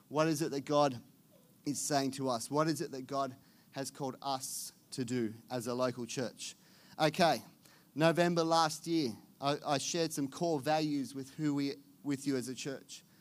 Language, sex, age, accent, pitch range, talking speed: English, male, 30-49, Australian, 135-170 Hz, 185 wpm